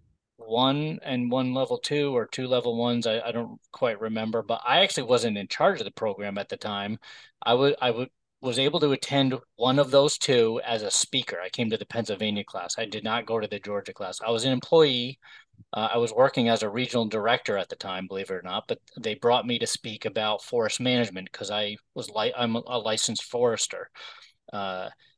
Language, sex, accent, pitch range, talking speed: English, male, American, 110-145 Hz, 220 wpm